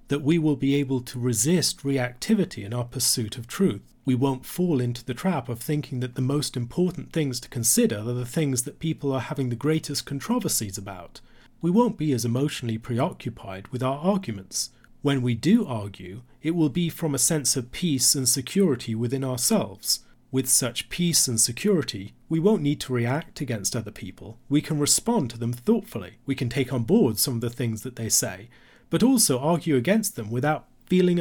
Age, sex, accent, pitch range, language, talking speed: 40-59, male, British, 120-155 Hz, English, 195 wpm